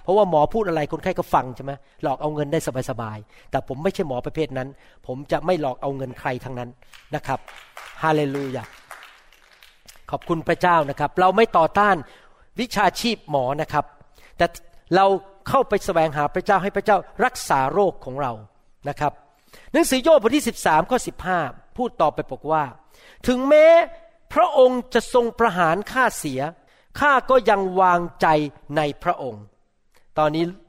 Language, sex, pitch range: Thai, male, 150-235 Hz